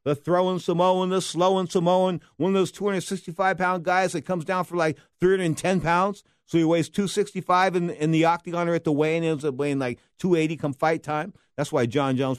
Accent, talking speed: American, 205 wpm